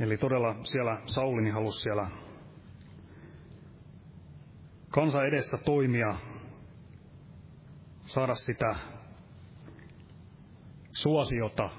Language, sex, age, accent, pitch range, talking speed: Finnish, male, 30-49, native, 110-145 Hz, 60 wpm